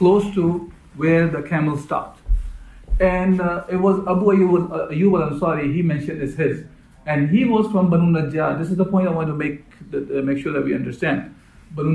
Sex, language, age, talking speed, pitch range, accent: male, English, 50-69, 200 wpm, 140-180 Hz, Indian